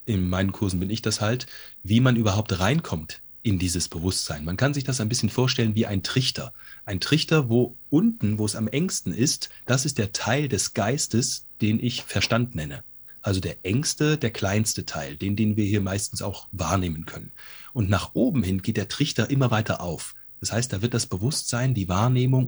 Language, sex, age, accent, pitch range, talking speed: German, male, 30-49, German, 100-125 Hz, 200 wpm